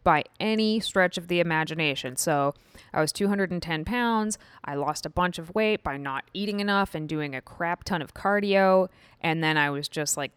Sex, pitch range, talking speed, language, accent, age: female, 165-215 Hz, 195 wpm, English, American, 20-39